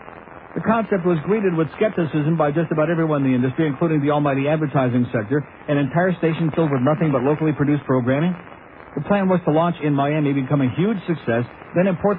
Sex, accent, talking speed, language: male, American, 200 wpm, English